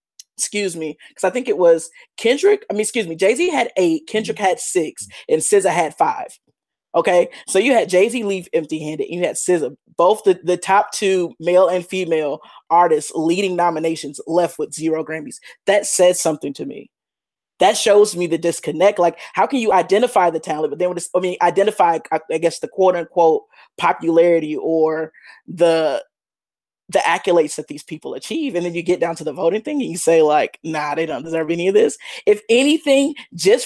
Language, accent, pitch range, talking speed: English, American, 165-225 Hz, 190 wpm